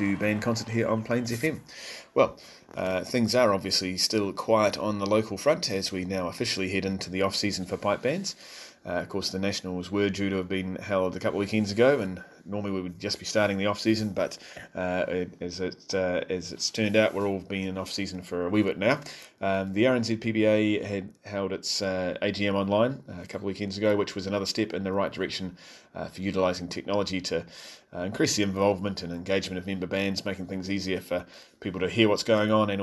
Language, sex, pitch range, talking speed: English, male, 95-110 Hz, 220 wpm